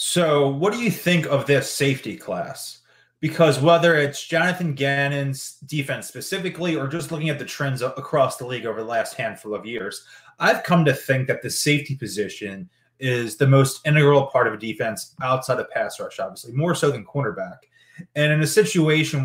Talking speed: 185 wpm